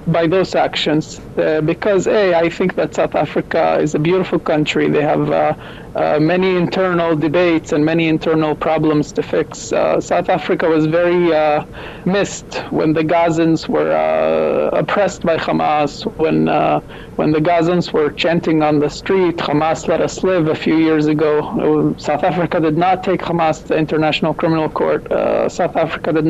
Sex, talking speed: male, 175 wpm